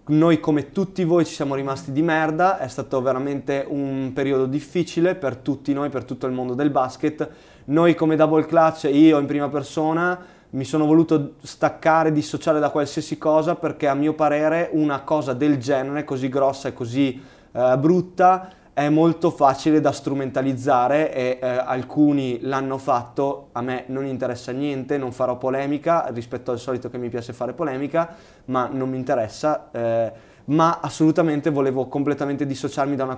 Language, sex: Italian, male